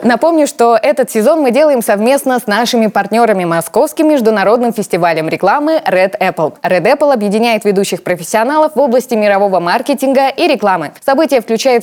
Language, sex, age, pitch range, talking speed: Russian, female, 20-39, 185-270 Hz, 145 wpm